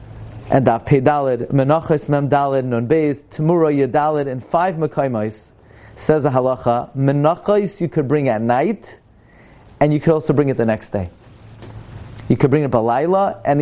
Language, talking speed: English, 165 wpm